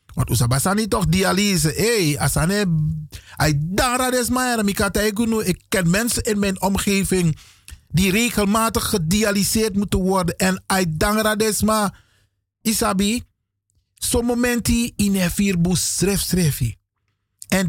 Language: Dutch